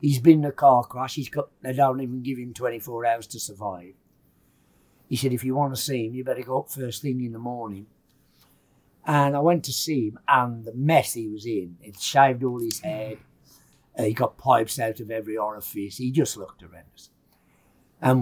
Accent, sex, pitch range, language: British, male, 115-155 Hz, English